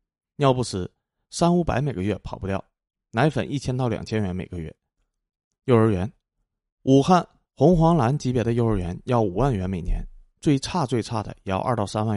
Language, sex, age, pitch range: Chinese, male, 20-39, 100-130 Hz